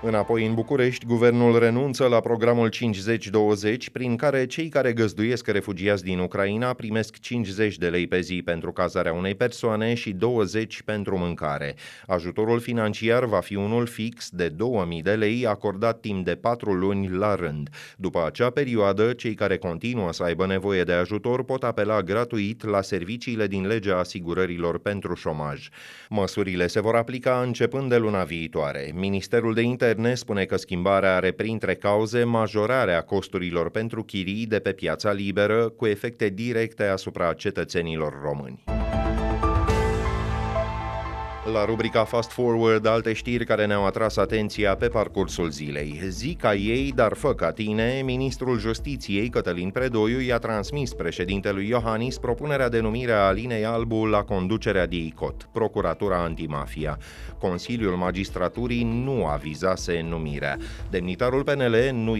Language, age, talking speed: Romanian, 30-49, 140 wpm